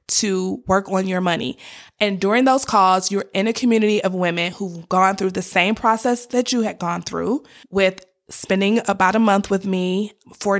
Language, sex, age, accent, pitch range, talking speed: English, female, 20-39, American, 180-215 Hz, 195 wpm